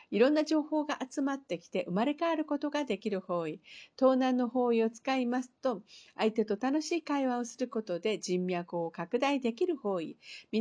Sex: female